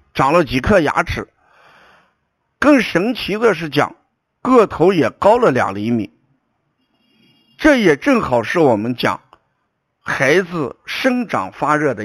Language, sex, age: Chinese, male, 50-69